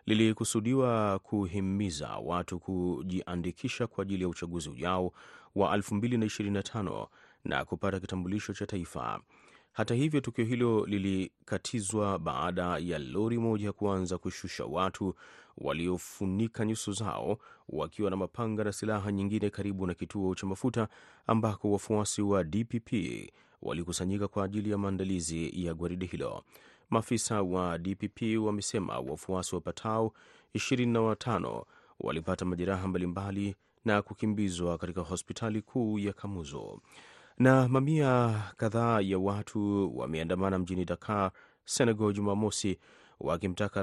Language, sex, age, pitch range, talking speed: Swahili, male, 30-49, 90-110 Hz, 120 wpm